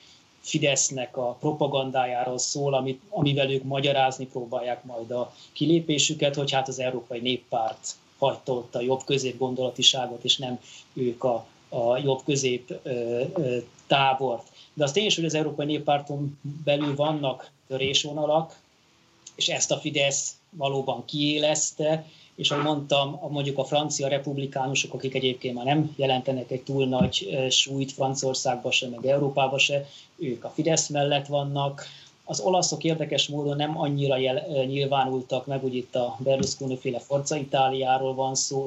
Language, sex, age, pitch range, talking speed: Hungarian, male, 30-49, 130-145 Hz, 135 wpm